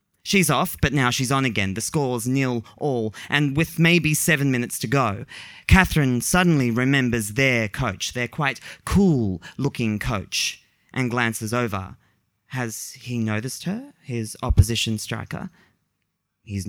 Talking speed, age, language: 135 wpm, 20-39, English